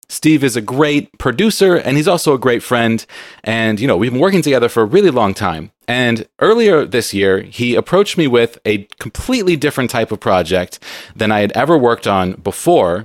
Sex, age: male, 30-49